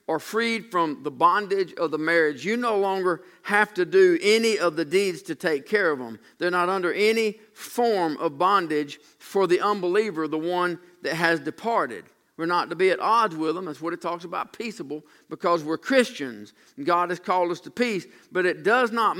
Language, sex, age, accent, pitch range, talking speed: English, male, 50-69, American, 150-195 Hz, 205 wpm